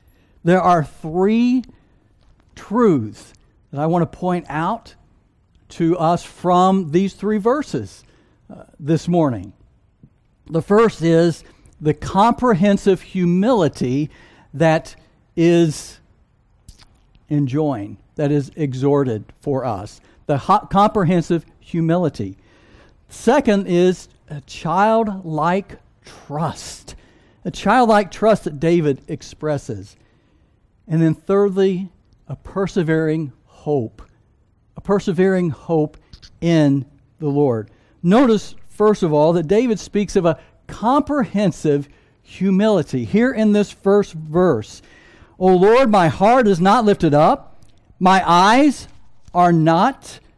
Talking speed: 105 wpm